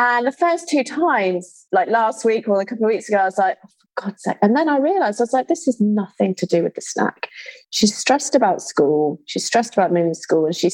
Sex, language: female, English